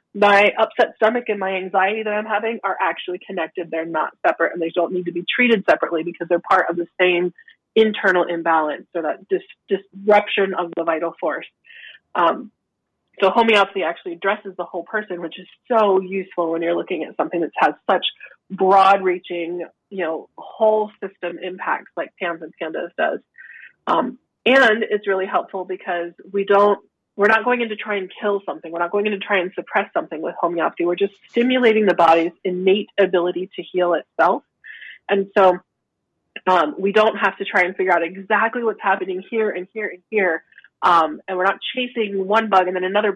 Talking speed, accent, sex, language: 190 wpm, American, female, English